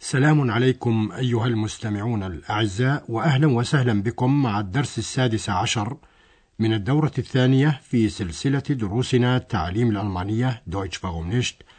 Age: 60-79